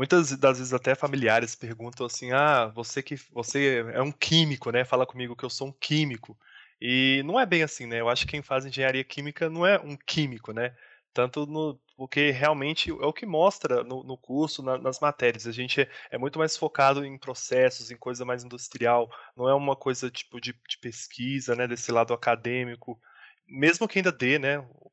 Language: Portuguese